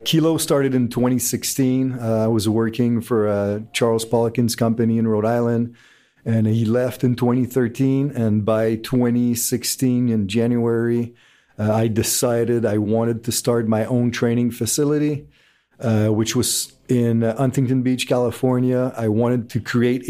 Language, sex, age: Polish, male, 40-59